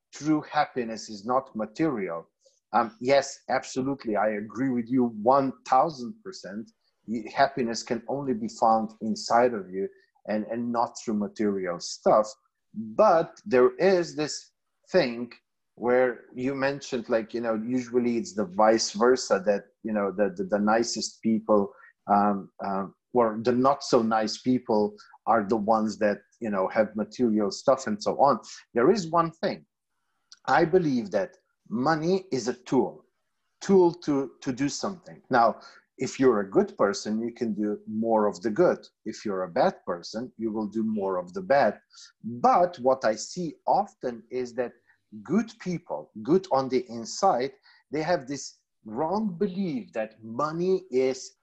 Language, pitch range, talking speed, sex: English, 110-170 Hz, 155 wpm, male